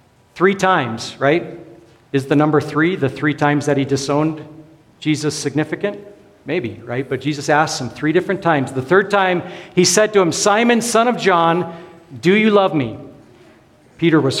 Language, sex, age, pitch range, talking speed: English, male, 50-69, 120-155 Hz, 170 wpm